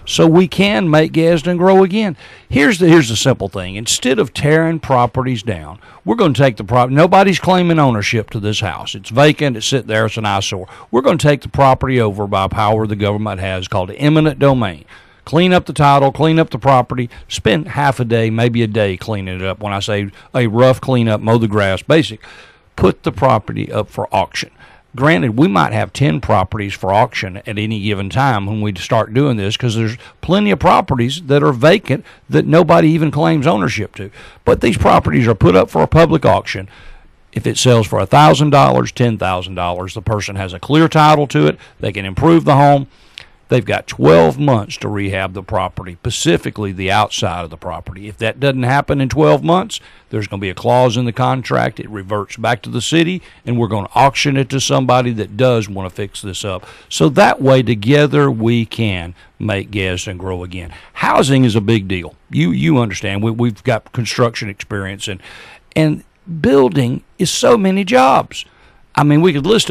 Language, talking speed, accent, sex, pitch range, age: English, 200 wpm, American, male, 100-145 Hz, 50-69